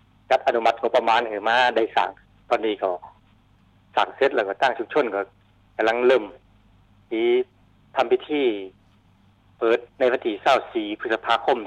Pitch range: 100-130 Hz